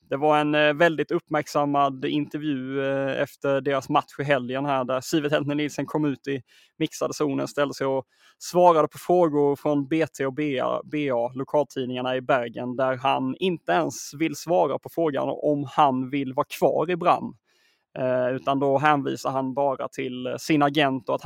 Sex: male